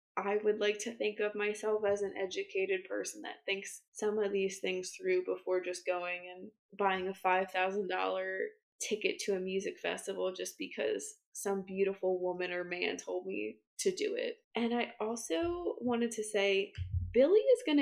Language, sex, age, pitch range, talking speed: English, female, 20-39, 200-285 Hz, 170 wpm